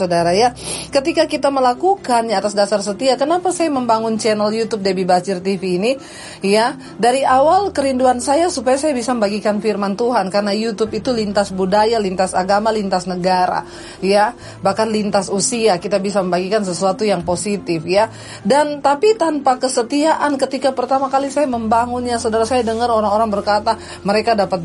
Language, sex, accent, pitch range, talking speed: Indonesian, female, native, 205-270 Hz, 155 wpm